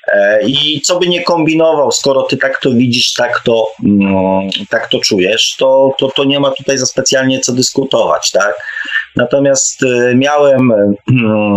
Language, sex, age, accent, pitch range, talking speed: Polish, male, 30-49, native, 100-145 Hz, 140 wpm